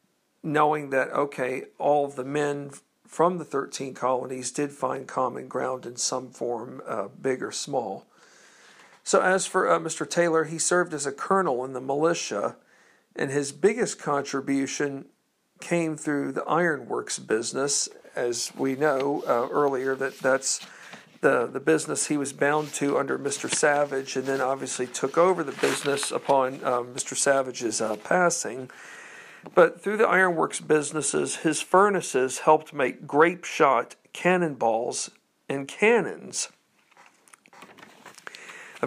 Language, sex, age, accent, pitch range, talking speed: English, male, 50-69, American, 135-160 Hz, 135 wpm